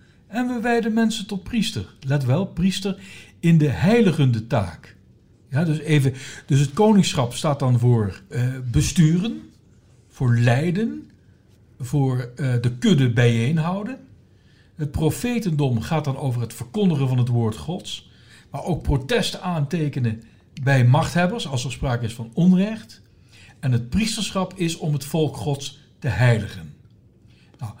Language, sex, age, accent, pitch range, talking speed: Dutch, male, 60-79, Dutch, 120-175 Hz, 135 wpm